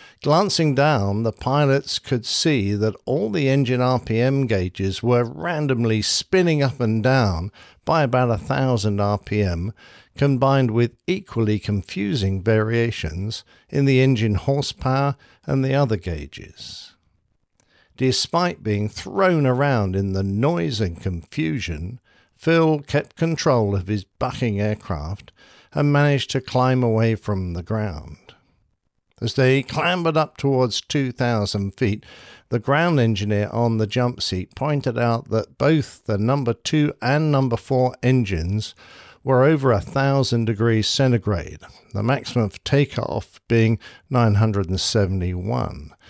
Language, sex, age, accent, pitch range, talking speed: English, male, 50-69, British, 105-135 Hz, 125 wpm